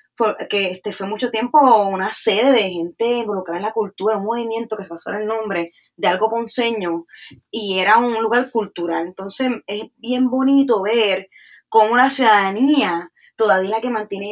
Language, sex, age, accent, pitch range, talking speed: English, female, 20-39, American, 195-240 Hz, 170 wpm